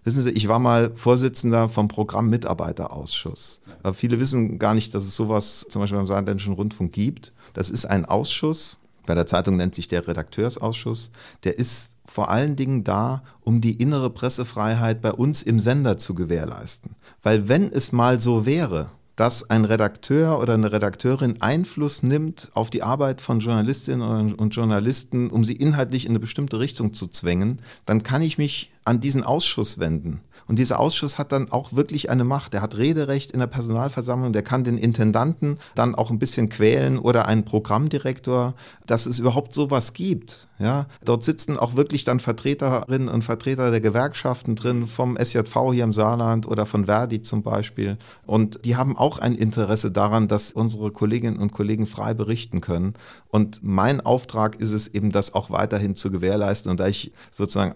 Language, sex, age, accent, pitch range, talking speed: German, male, 40-59, German, 105-125 Hz, 175 wpm